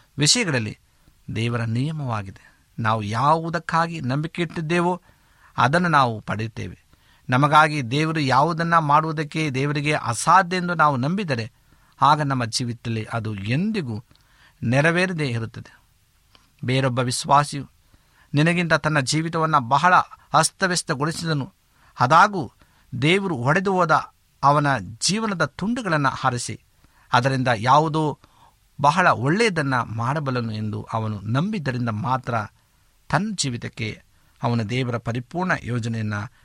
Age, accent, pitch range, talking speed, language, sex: 60-79, native, 115-160 Hz, 90 wpm, Kannada, male